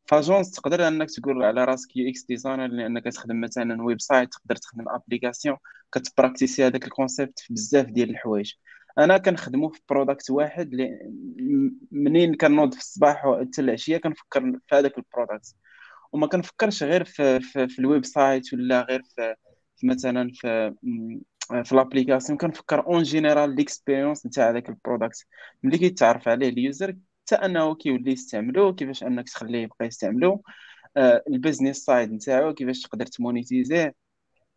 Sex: male